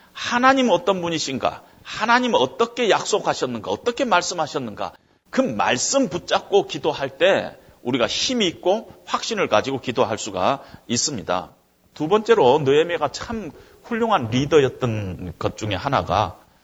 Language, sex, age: Korean, male, 40-59